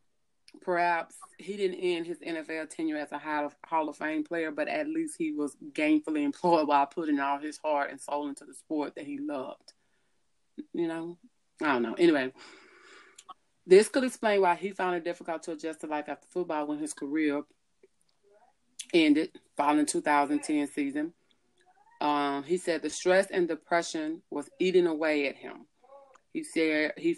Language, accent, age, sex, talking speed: English, American, 30-49, female, 170 wpm